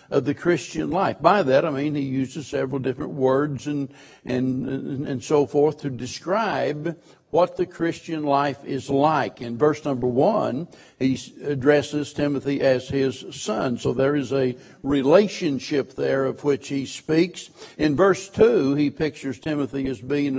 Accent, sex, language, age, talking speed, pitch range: American, male, English, 60-79, 160 wpm, 140-170 Hz